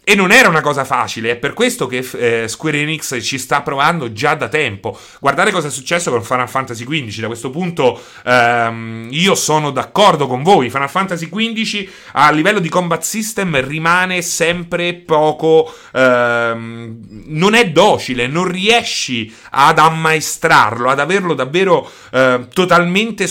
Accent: native